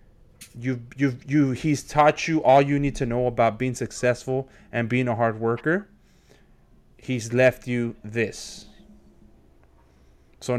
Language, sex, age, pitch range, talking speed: English, male, 20-39, 125-185 Hz, 135 wpm